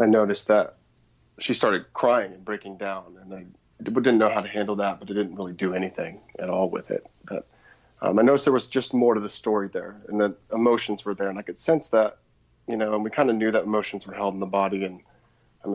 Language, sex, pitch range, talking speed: English, male, 100-110 Hz, 250 wpm